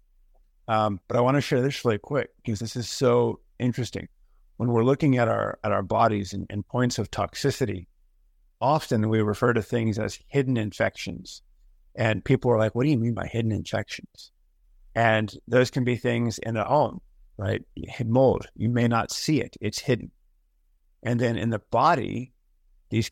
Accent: American